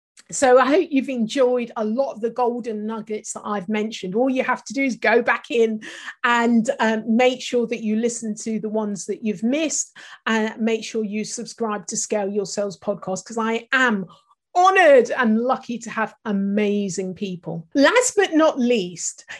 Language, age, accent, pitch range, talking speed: English, 40-59, British, 210-275 Hz, 190 wpm